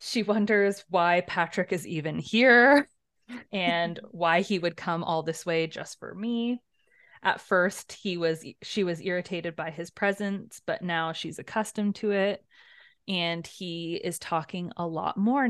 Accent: American